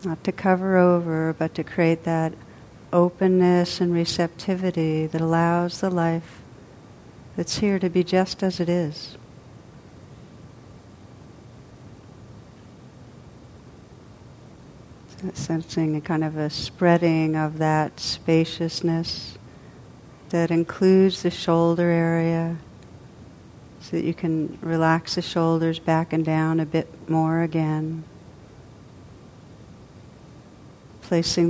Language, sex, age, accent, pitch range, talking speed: English, female, 60-79, American, 140-175 Hz, 100 wpm